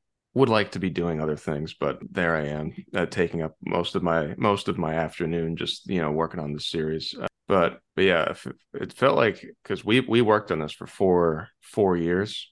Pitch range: 75-85 Hz